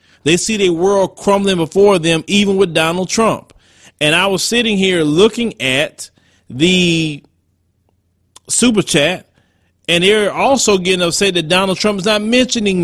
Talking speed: 150 wpm